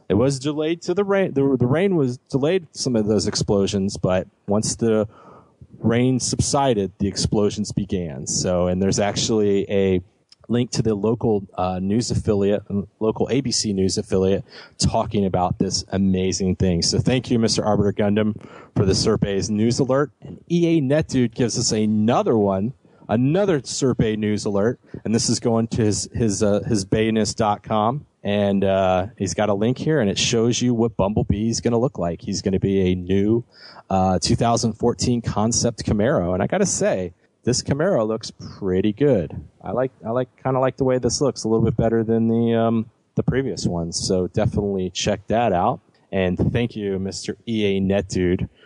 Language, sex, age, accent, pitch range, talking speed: English, male, 30-49, American, 100-120 Hz, 180 wpm